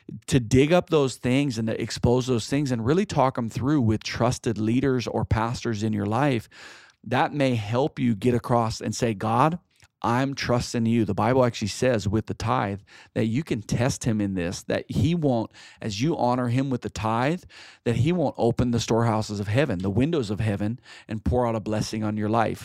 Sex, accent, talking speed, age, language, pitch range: male, American, 210 wpm, 40-59, English, 105-125 Hz